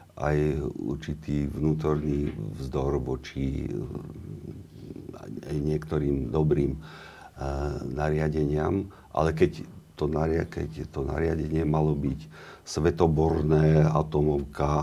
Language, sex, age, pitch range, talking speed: Slovak, male, 50-69, 70-80 Hz, 85 wpm